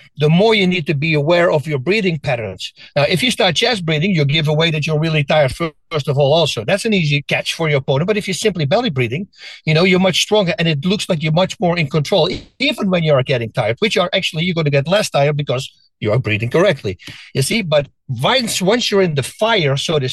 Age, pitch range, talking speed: 60-79, 150-200 Hz, 255 wpm